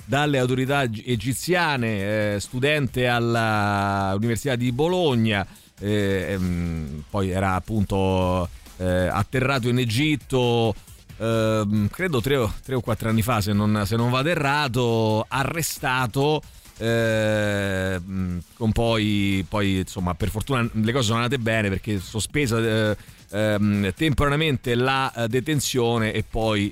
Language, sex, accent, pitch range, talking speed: Italian, male, native, 100-130 Hz, 120 wpm